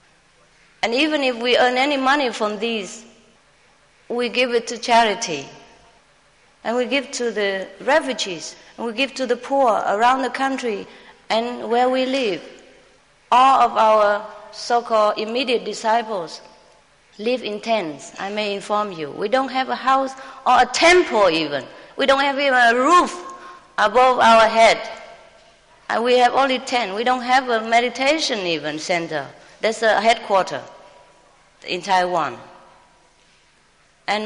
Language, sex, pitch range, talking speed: English, female, 215-265 Hz, 145 wpm